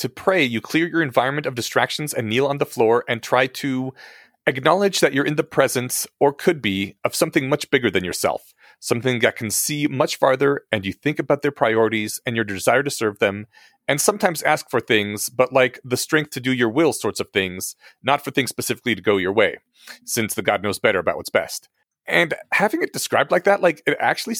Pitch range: 115-150 Hz